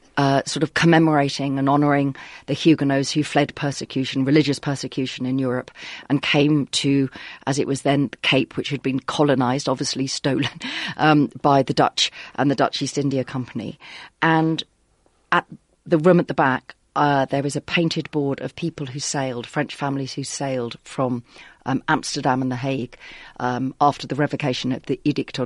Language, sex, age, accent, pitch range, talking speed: English, female, 40-59, British, 130-160 Hz, 175 wpm